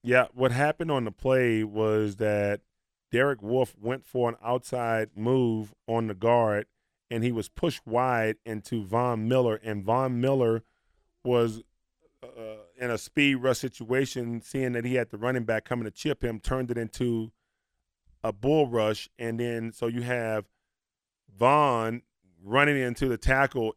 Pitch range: 110-130 Hz